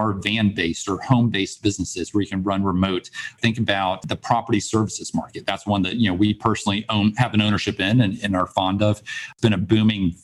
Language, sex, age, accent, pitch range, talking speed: English, male, 40-59, American, 95-115 Hz, 215 wpm